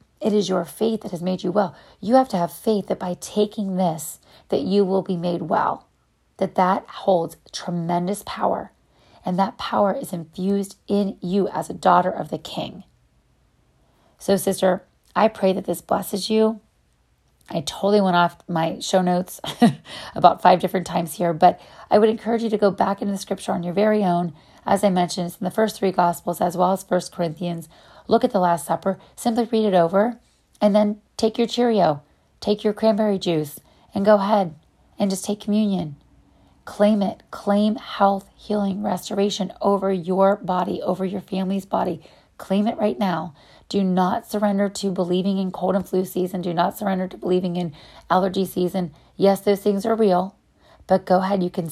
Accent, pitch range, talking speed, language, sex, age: American, 180-205 Hz, 185 wpm, English, female, 30-49